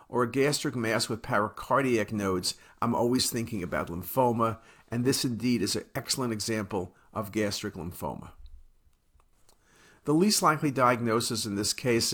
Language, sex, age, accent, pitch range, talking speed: English, male, 50-69, American, 110-145 Hz, 145 wpm